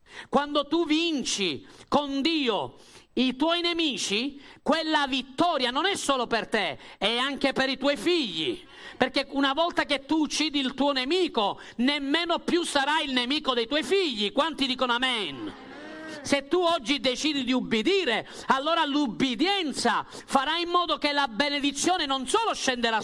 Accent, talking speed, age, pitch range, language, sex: native, 150 wpm, 40-59, 225-310 Hz, Italian, male